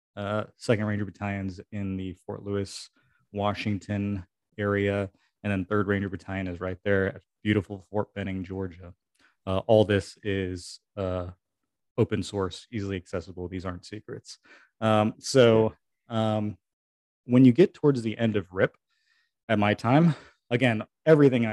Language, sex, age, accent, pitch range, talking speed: English, male, 30-49, American, 95-120 Hz, 140 wpm